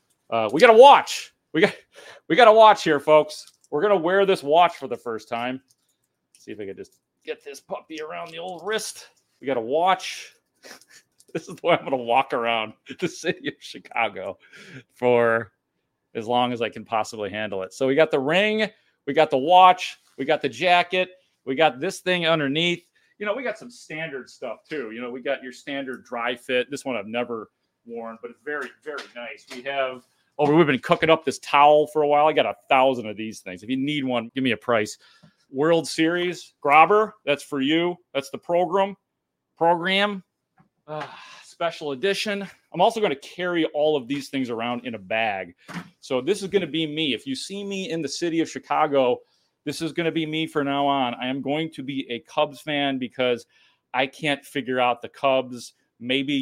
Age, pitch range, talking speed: 40-59, 125-175 Hz, 210 wpm